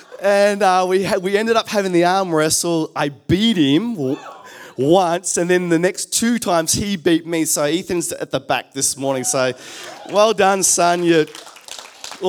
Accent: Australian